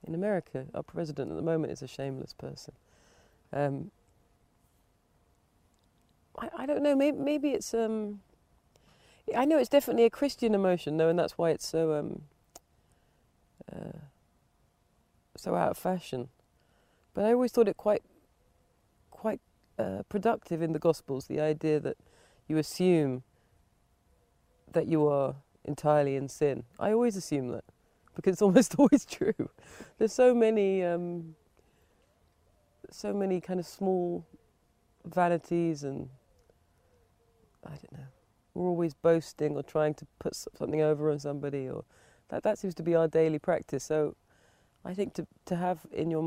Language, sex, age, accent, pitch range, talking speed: English, female, 30-49, British, 135-190 Hz, 145 wpm